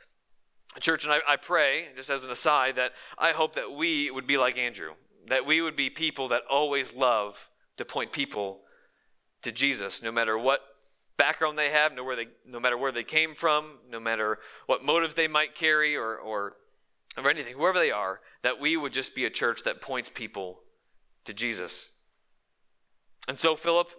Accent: American